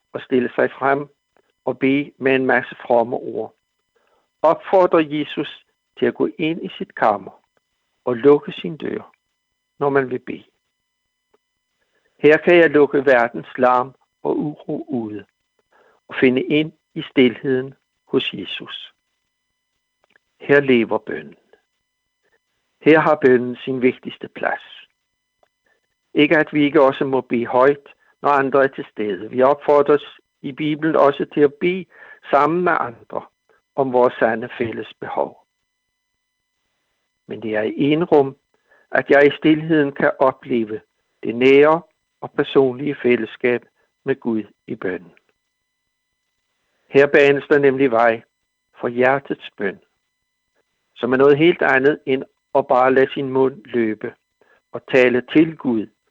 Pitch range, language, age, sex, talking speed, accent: 125-145 Hz, Danish, 60-79, male, 135 wpm, native